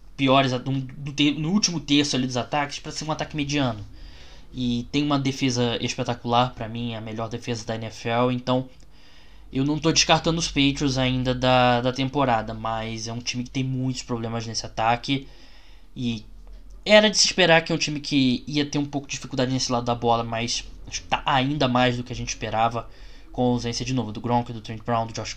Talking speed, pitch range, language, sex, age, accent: 200 wpm, 120-140 Hz, Portuguese, male, 10-29, Brazilian